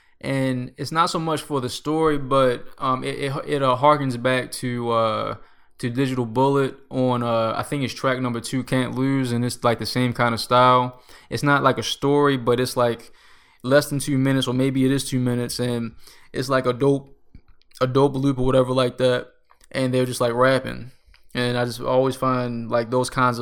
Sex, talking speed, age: male, 210 wpm, 20-39